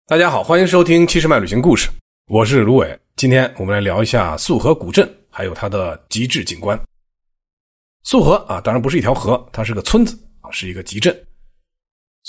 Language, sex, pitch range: Chinese, male, 100-150 Hz